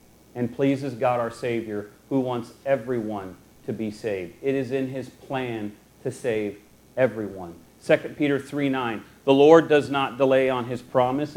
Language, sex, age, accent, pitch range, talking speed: English, male, 40-59, American, 110-140 Hz, 160 wpm